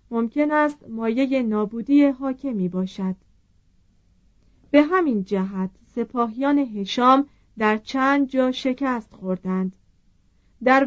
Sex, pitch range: female, 190-270 Hz